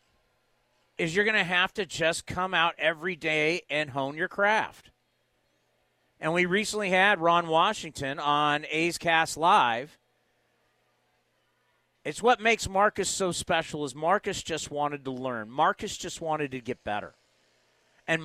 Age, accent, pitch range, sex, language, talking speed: 50-69, American, 145-210 Hz, male, English, 140 wpm